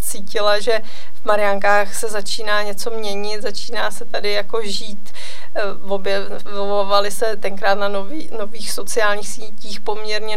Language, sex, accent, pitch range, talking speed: Czech, female, native, 210-230 Hz, 120 wpm